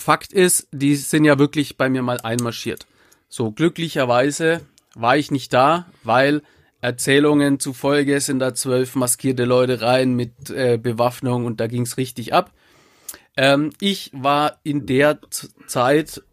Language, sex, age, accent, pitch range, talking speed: German, male, 40-59, German, 125-150 Hz, 145 wpm